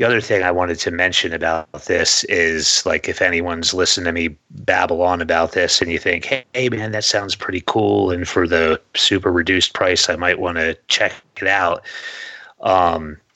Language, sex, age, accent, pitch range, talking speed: English, male, 30-49, American, 80-95 Hz, 195 wpm